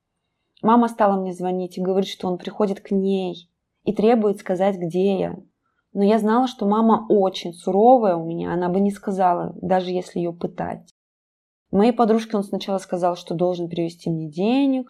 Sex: female